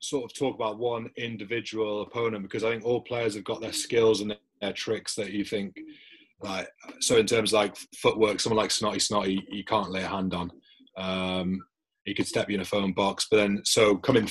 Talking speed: 225 wpm